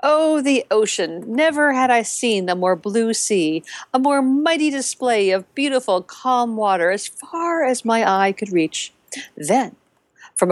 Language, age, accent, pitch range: English, 50-69, American, 200-280 Hz